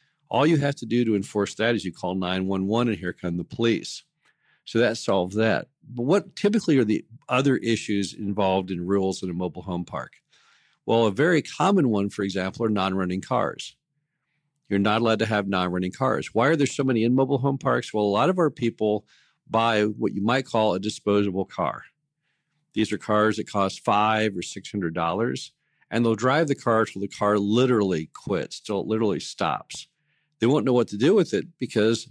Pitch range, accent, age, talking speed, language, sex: 100-130 Hz, American, 50-69, 200 wpm, English, male